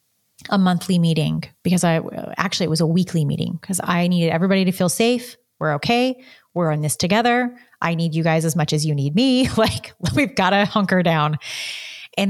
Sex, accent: female, American